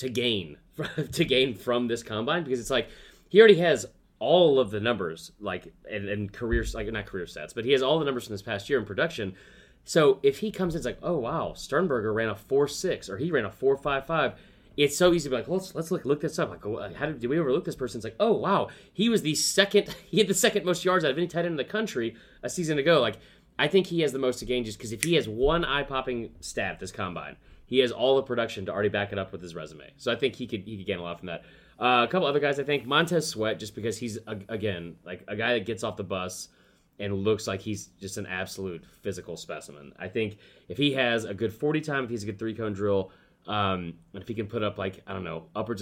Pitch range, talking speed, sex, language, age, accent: 100-145 Hz, 270 wpm, male, English, 30-49, American